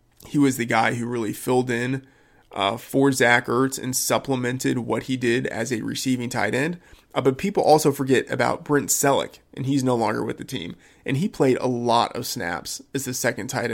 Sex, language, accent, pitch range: male, English, American, 120-140 Hz